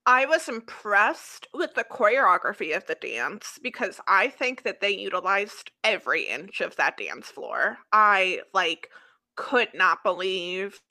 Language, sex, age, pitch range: English, female, 20-39, 195-315 Hz